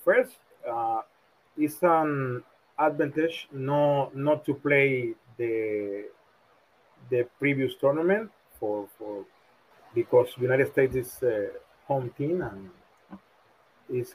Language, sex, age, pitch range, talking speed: English, male, 30-49, 120-175 Hz, 105 wpm